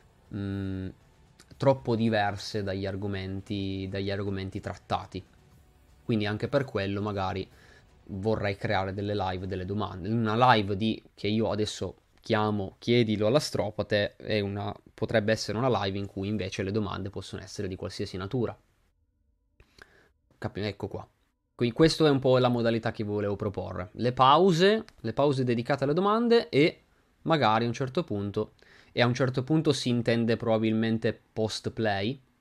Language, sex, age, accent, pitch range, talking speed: Italian, male, 20-39, native, 100-120 Hz, 145 wpm